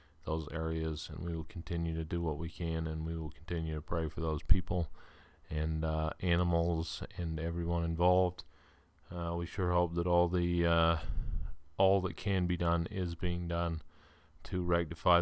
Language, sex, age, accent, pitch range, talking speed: English, male, 40-59, American, 80-90 Hz, 175 wpm